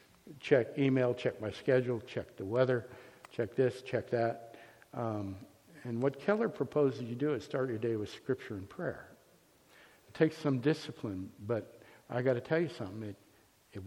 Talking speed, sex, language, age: 175 wpm, male, English, 60-79